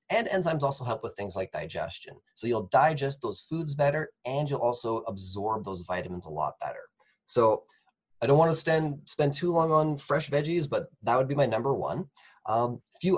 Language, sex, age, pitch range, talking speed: English, male, 20-39, 110-160 Hz, 195 wpm